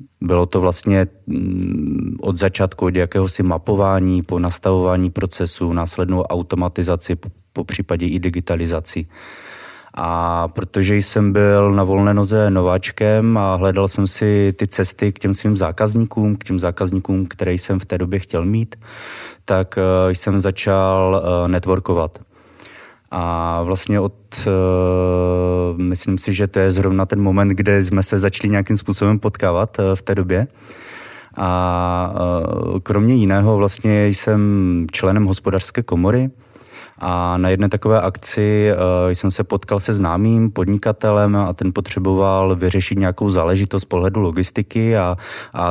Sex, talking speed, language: male, 135 wpm, Czech